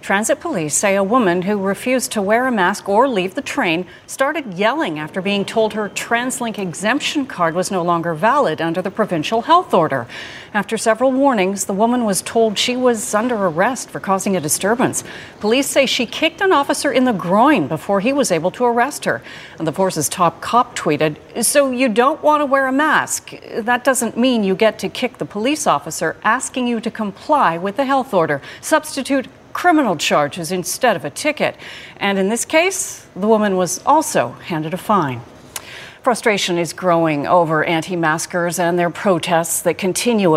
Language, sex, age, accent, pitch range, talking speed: English, female, 40-59, American, 175-250 Hz, 185 wpm